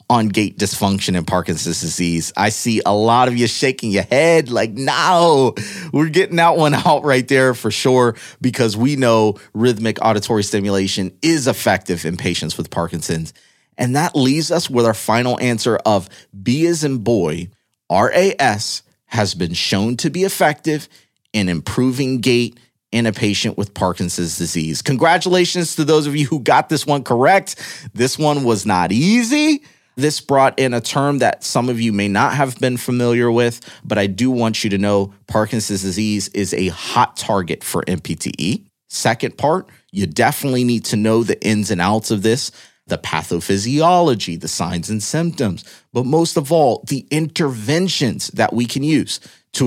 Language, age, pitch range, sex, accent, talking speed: English, 30-49, 100-140 Hz, male, American, 170 wpm